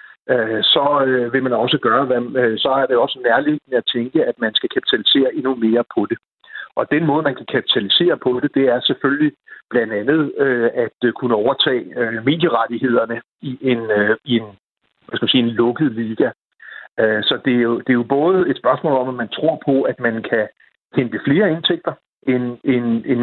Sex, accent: male, native